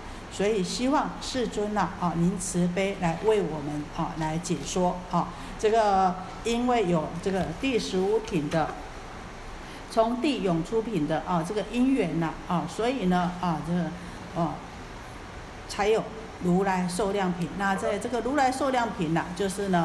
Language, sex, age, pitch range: Chinese, female, 50-69, 165-210 Hz